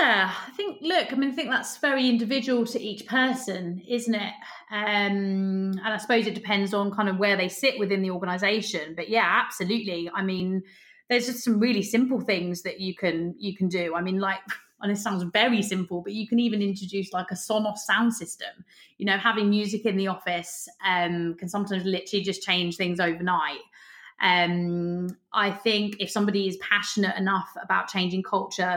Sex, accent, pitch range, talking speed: female, British, 180-210 Hz, 195 wpm